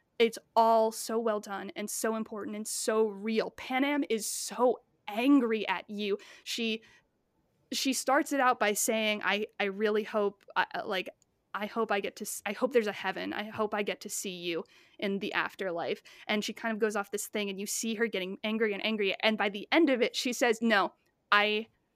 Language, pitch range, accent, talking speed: English, 200-230 Hz, American, 210 wpm